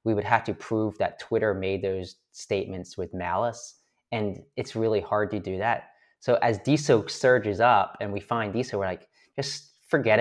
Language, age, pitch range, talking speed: English, 30-49, 95-115 Hz, 190 wpm